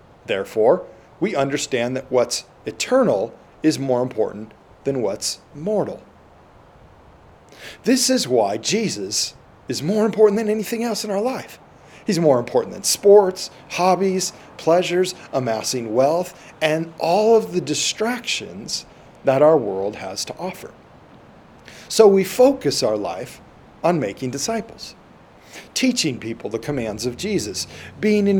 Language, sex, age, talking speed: English, male, 40-59, 130 wpm